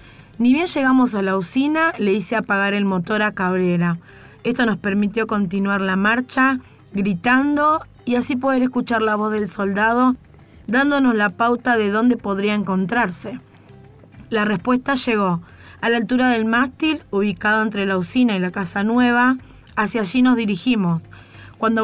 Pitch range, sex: 200-250 Hz, female